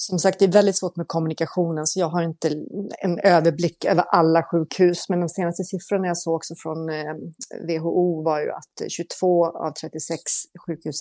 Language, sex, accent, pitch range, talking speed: Swedish, female, native, 155-180 Hz, 180 wpm